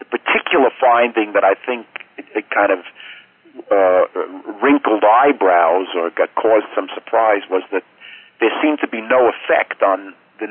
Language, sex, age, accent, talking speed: English, male, 50-69, American, 145 wpm